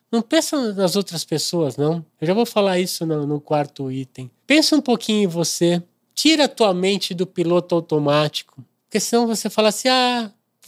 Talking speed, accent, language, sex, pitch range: 185 wpm, Brazilian, Portuguese, male, 150-220 Hz